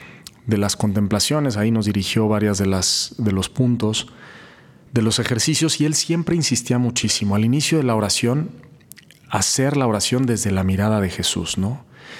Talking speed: 165 wpm